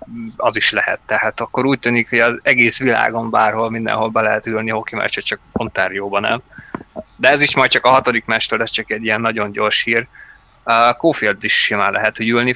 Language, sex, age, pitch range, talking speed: Hungarian, male, 20-39, 105-120 Hz, 200 wpm